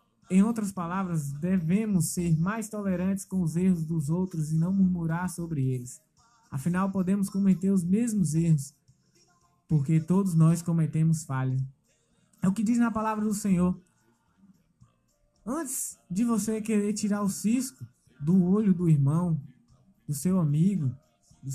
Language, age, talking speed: Portuguese, 20-39, 140 wpm